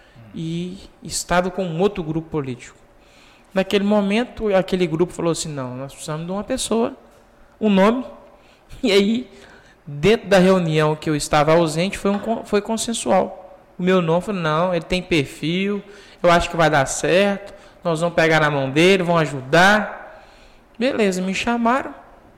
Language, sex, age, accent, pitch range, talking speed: Portuguese, male, 20-39, Brazilian, 155-195 Hz, 160 wpm